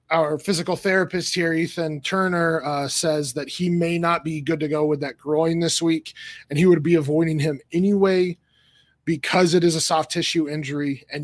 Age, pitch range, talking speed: 20-39, 145-170 Hz, 190 wpm